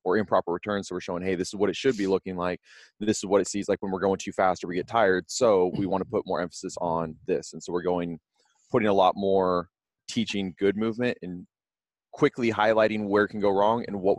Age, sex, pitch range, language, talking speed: 20-39, male, 90-100 Hz, English, 245 wpm